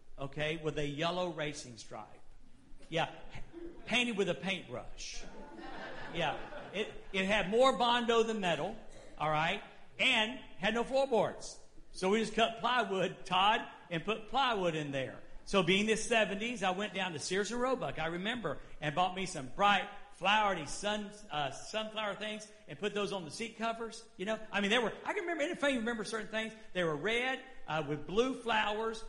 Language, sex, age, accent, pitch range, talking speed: English, male, 50-69, American, 180-240 Hz, 185 wpm